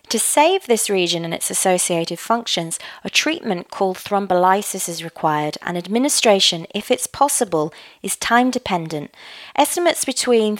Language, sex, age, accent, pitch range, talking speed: English, female, 30-49, British, 175-225 Hz, 135 wpm